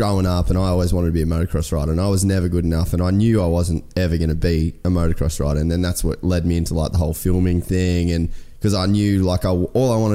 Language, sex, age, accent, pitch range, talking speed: English, male, 20-39, Australian, 85-100 Hz, 290 wpm